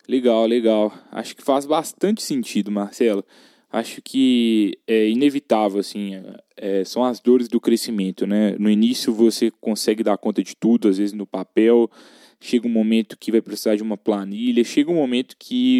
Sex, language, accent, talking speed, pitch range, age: male, Portuguese, Brazilian, 165 wpm, 105-165 Hz, 10-29